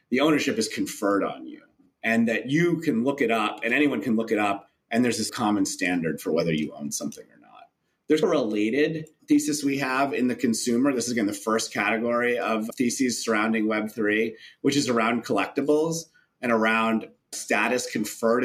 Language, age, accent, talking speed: English, 30-49, American, 190 wpm